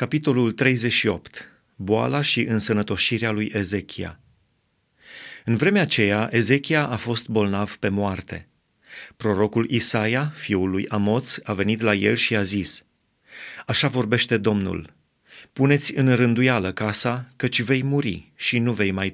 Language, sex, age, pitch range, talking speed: Romanian, male, 30-49, 100-130 Hz, 130 wpm